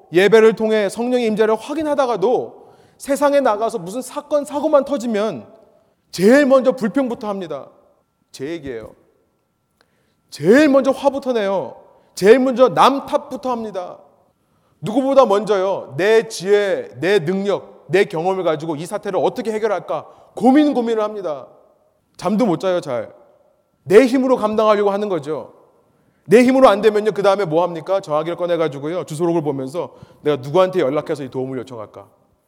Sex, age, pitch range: male, 30-49, 170-255 Hz